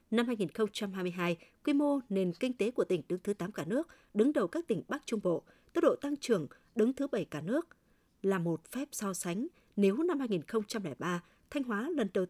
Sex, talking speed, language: female, 205 wpm, Vietnamese